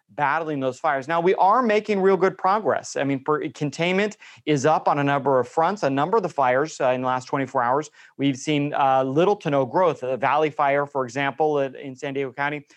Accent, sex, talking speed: American, male, 220 wpm